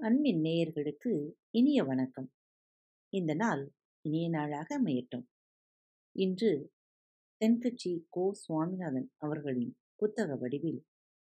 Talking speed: 85 wpm